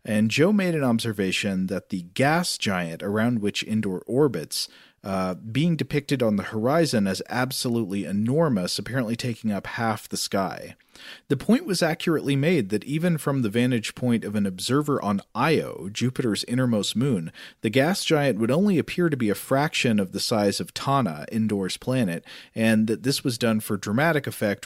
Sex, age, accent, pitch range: male, 40-59, American, 105-150 Hz